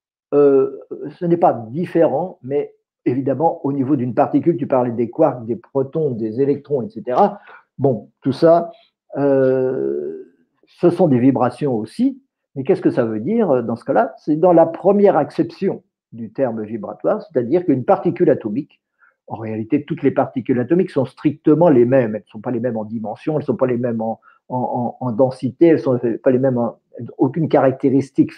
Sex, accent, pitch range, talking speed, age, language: male, French, 130-190 Hz, 185 wpm, 50-69, French